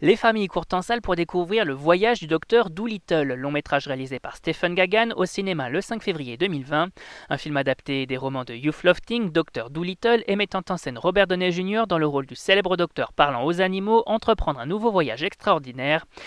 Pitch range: 145-200 Hz